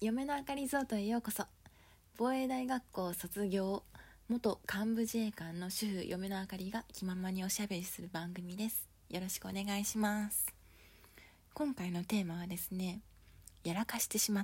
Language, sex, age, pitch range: Japanese, female, 20-39, 170-215 Hz